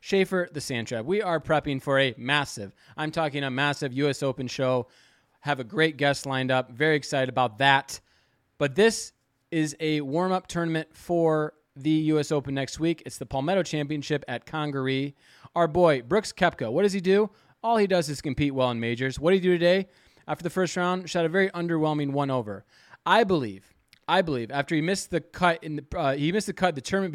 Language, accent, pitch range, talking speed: English, American, 140-180 Hz, 210 wpm